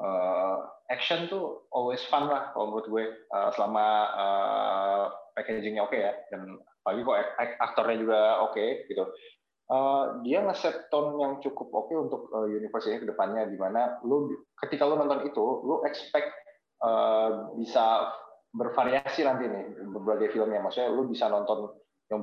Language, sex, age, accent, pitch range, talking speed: Indonesian, male, 20-39, native, 110-150 Hz, 150 wpm